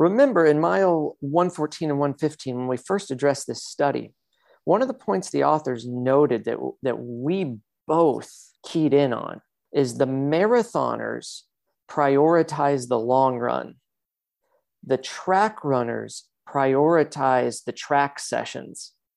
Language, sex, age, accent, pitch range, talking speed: English, male, 40-59, American, 130-155 Hz, 125 wpm